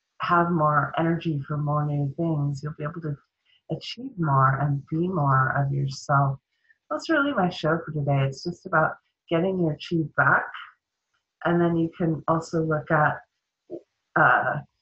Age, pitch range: 30-49, 145-175 Hz